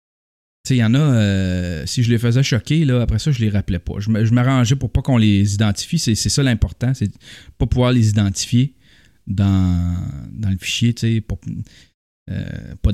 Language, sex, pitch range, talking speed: French, male, 100-135 Hz, 200 wpm